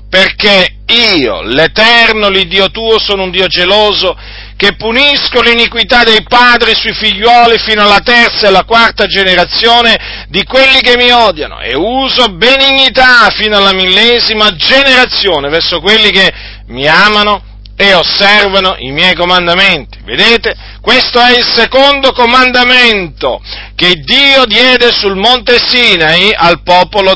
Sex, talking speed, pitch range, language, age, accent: male, 130 wpm, 185-235 Hz, Italian, 40-59, native